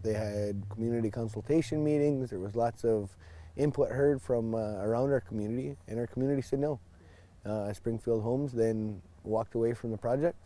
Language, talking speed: English, 170 wpm